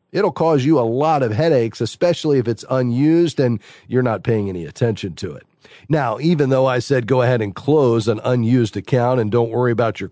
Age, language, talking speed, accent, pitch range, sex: 40-59, English, 215 wpm, American, 115-140 Hz, male